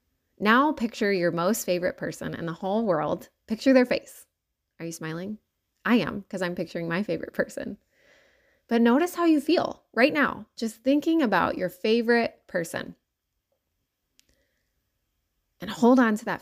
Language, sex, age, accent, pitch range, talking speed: English, female, 20-39, American, 180-255 Hz, 155 wpm